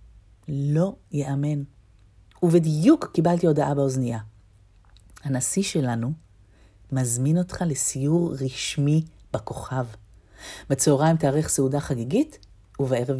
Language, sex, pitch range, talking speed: Hebrew, female, 100-165 Hz, 80 wpm